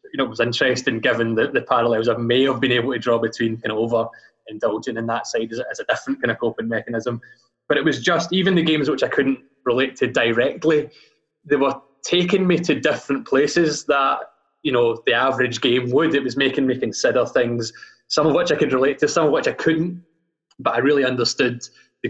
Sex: male